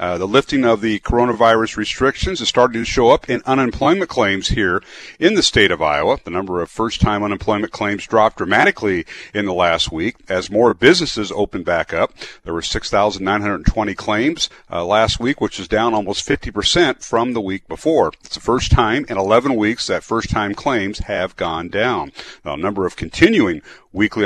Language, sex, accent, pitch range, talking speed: English, male, American, 100-120 Hz, 190 wpm